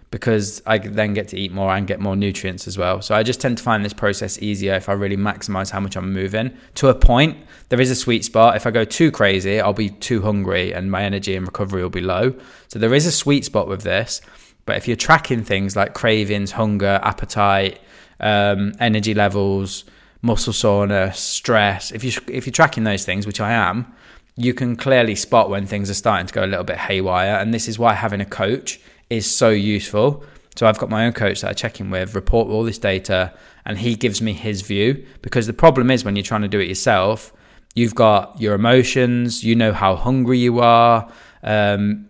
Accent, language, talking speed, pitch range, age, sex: British, English, 220 wpm, 100-120 Hz, 20-39, male